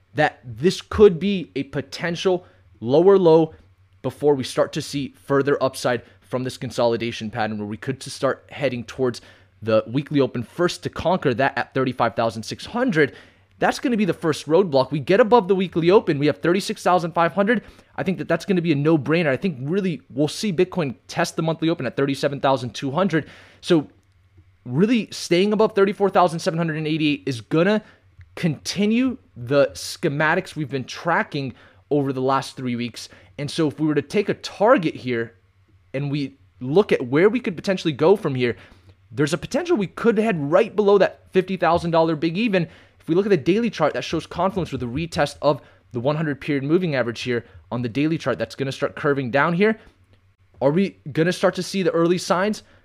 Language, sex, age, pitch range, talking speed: English, male, 20-39, 120-180 Hz, 210 wpm